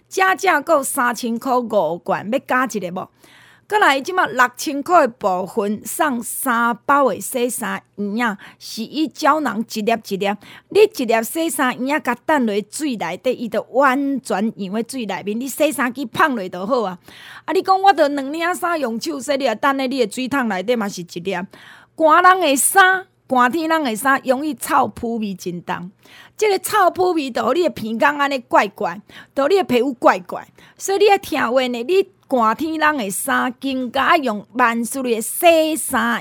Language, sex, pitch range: Chinese, female, 225-300 Hz